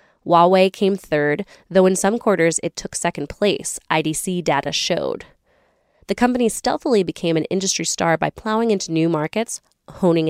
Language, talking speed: English, 155 wpm